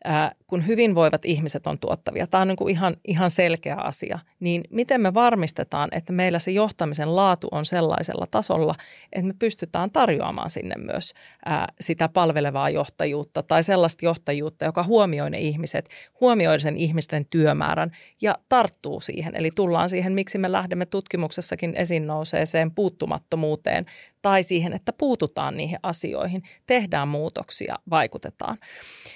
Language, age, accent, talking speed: Finnish, 30-49, native, 135 wpm